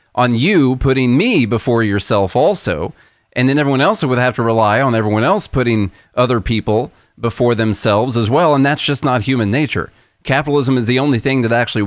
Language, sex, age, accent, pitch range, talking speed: English, male, 30-49, American, 110-135 Hz, 190 wpm